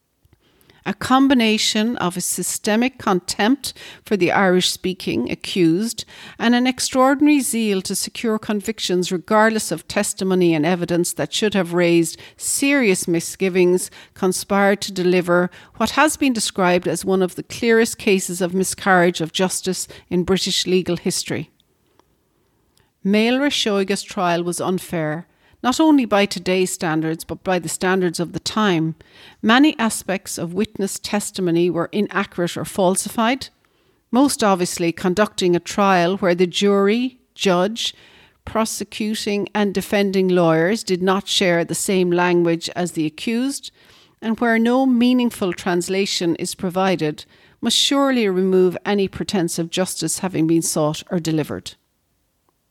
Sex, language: female, English